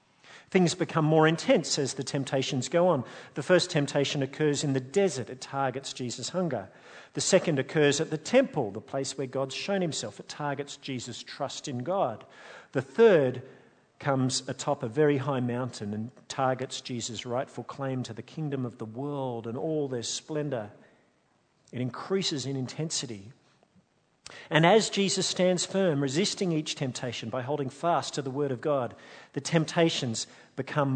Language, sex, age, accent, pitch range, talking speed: English, male, 50-69, Australian, 125-155 Hz, 165 wpm